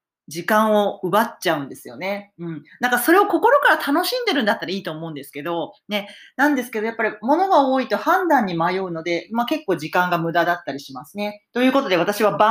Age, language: 40-59, Japanese